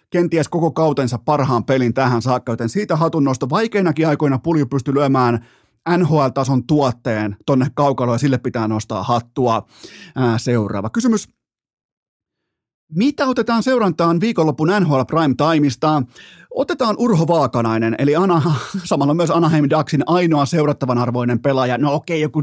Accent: native